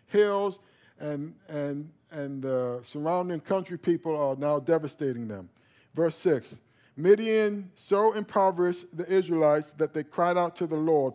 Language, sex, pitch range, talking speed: English, male, 150-185 Hz, 140 wpm